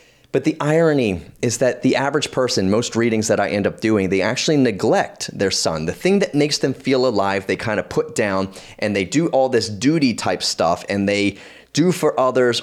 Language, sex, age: English, male, 30-49